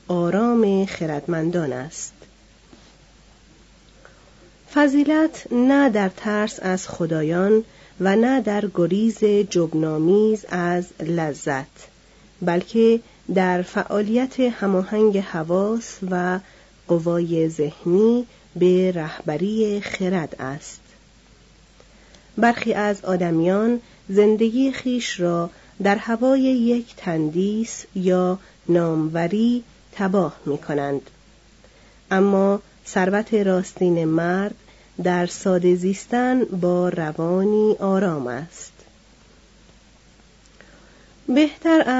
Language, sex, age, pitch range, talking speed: Persian, female, 40-59, 175-220 Hz, 80 wpm